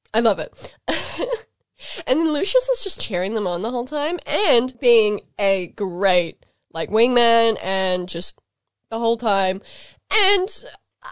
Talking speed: 140 wpm